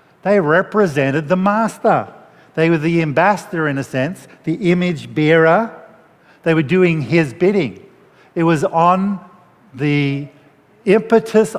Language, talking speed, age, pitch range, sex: English, 125 wpm, 50-69, 140-190 Hz, male